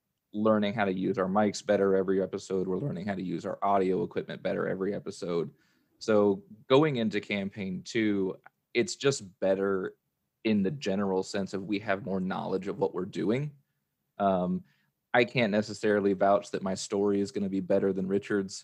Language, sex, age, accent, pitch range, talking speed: English, male, 20-39, American, 95-105 Hz, 180 wpm